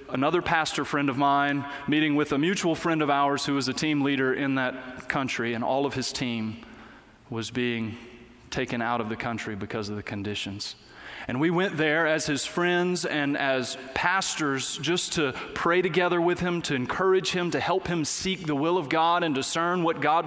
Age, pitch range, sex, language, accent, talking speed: 30-49, 135-180 Hz, male, English, American, 200 wpm